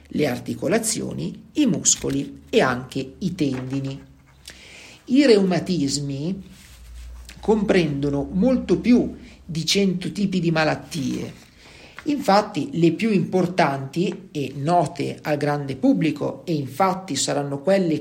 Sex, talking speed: male, 105 wpm